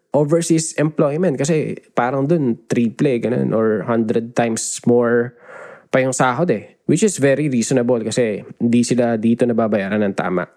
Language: Filipino